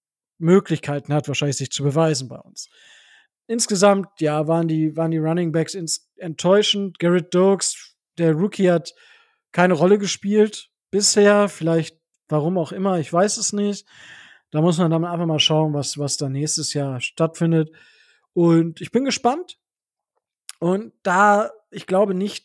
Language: German